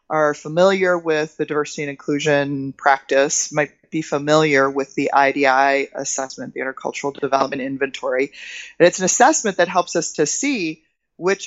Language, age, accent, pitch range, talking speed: English, 30-49, American, 150-205 Hz, 150 wpm